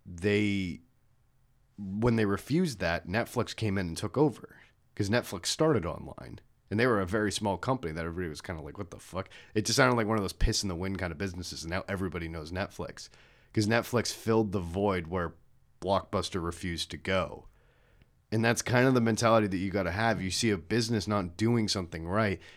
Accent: American